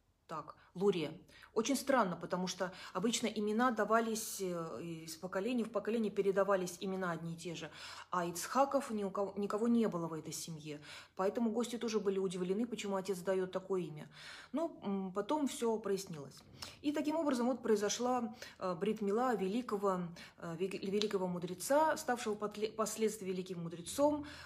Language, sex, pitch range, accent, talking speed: Russian, female, 185-235 Hz, native, 140 wpm